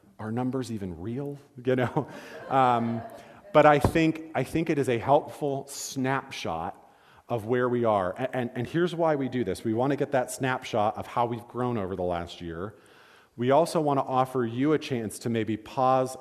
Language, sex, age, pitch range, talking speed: English, male, 40-59, 105-130 Hz, 200 wpm